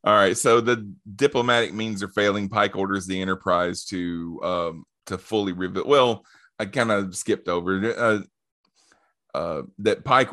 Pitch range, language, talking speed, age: 90-110 Hz, English, 155 wpm, 30-49